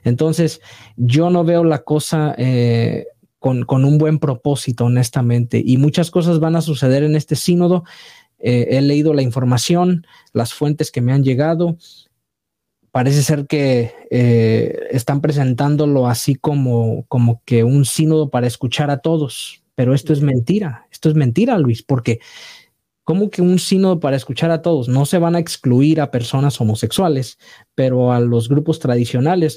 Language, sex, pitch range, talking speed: Spanish, male, 125-160 Hz, 160 wpm